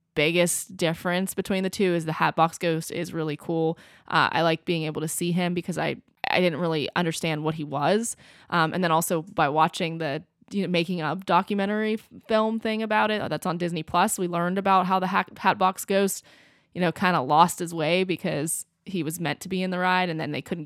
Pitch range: 160-195 Hz